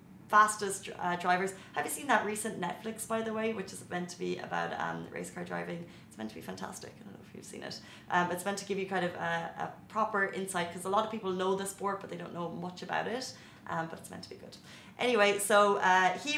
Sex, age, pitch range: female, 20-39, 175-205 Hz